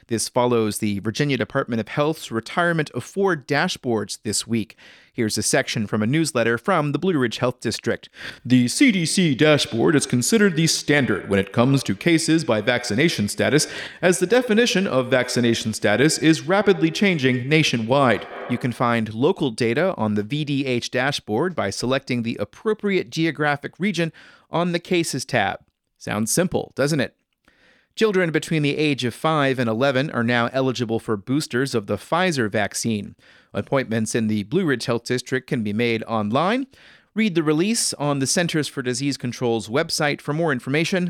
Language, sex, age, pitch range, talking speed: English, male, 30-49, 115-160 Hz, 165 wpm